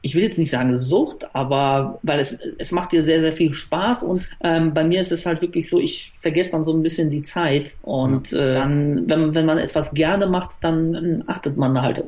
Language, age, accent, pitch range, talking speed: German, 40-59, German, 135-160 Hz, 240 wpm